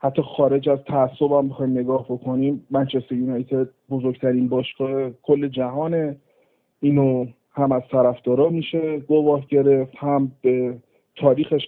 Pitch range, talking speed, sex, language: 130-160 Hz, 120 wpm, male, Persian